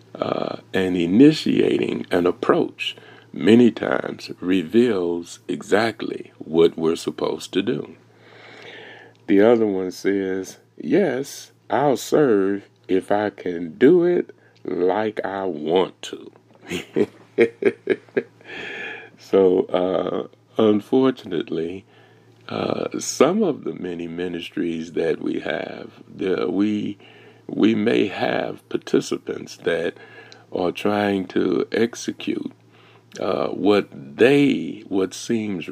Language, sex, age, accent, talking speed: English, male, 60-79, American, 95 wpm